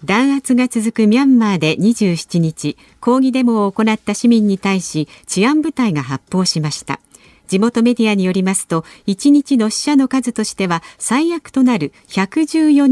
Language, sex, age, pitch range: Japanese, female, 50-69, 175-260 Hz